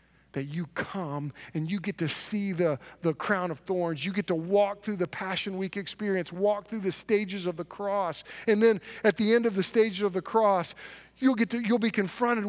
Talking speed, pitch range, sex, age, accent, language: 220 wpm, 175-225 Hz, male, 40-59, American, English